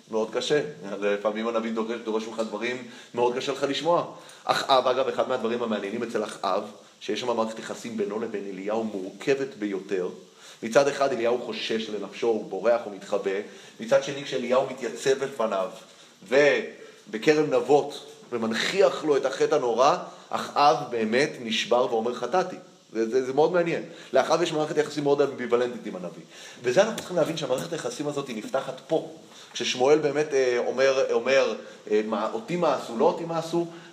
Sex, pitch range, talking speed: male, 115-160 Hz, 155 wpm